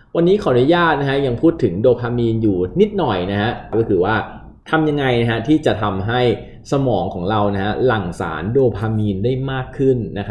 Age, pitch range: 20-39, 100-130 Hz